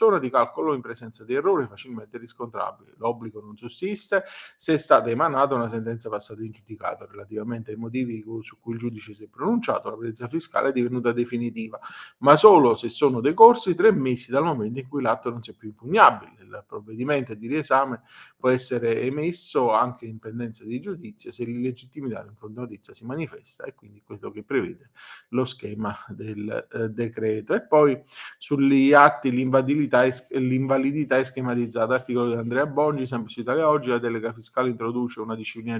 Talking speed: 175 wpm